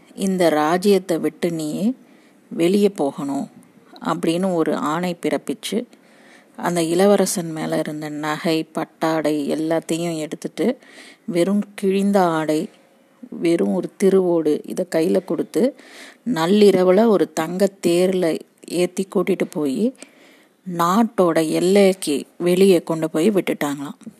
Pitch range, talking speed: 165-210 Hz, 95 wpm